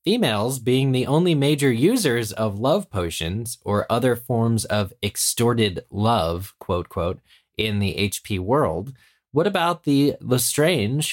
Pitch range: 95-130 Hz